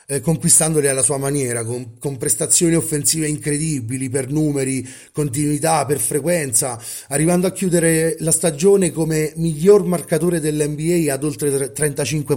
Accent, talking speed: native, 125 wpm